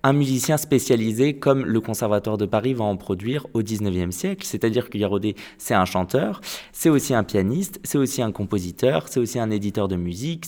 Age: 20-39